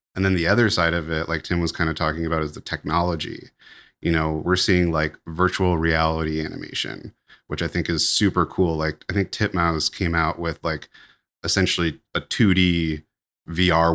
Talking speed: 185 wpm